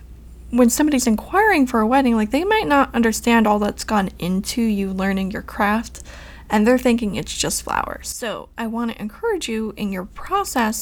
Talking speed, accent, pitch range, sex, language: 185 wpm, American, 200-240 Hz, female, English